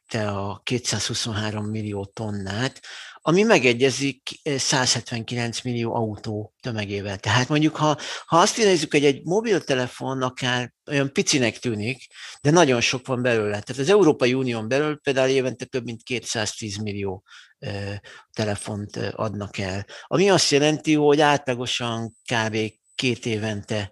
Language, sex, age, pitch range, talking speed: Hungarian, male, 50-69, 110-135 Hz, 130 wpm